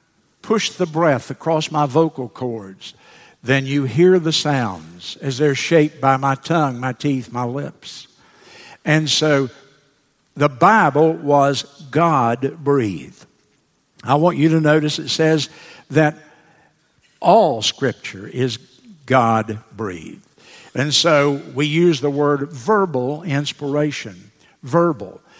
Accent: American